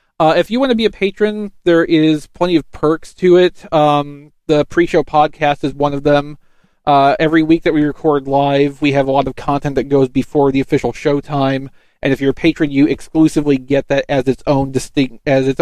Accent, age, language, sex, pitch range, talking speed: American, 40-59, English, male, 135-155 Hz, 220 wpm